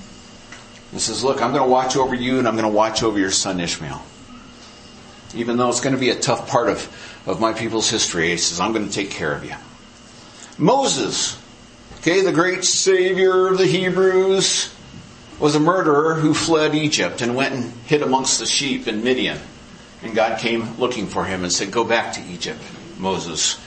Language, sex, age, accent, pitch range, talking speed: English, male, 50-69, American, 120-175 Hz, 195 wpm